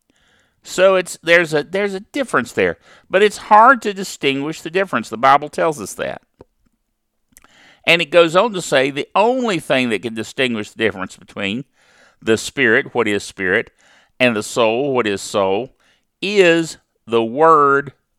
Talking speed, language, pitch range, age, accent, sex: 160 wpm, English, 110-175 Hz, 50-69, American, male